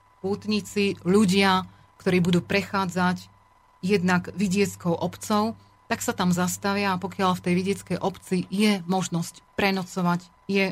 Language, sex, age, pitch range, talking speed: Slovak, female, 30-49, 180-205 Hz, 125 wpm